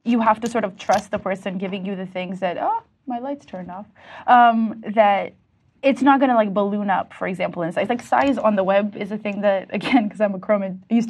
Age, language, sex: 20-39, English, female